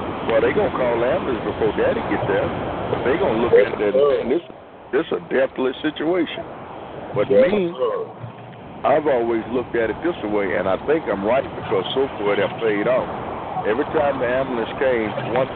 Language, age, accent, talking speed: English, 60-79, American, 190 wpm